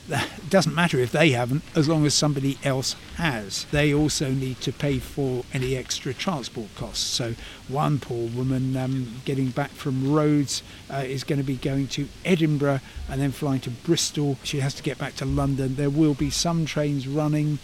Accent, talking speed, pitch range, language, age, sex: British, 195 wpm, 130-165 Hz, English, 50-69, male